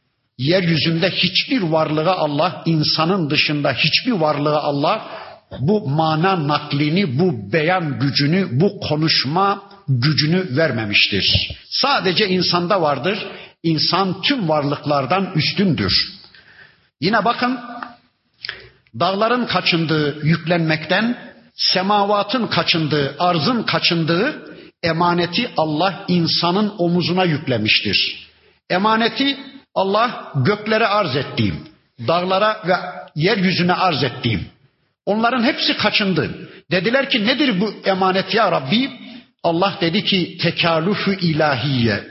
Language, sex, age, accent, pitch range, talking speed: Turkish, male, 50-69, native, 155-205 Hz, 95 wpm